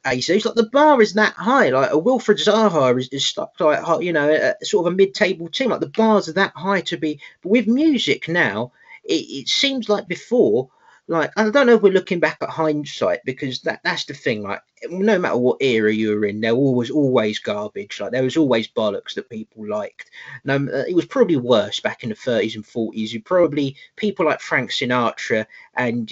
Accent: British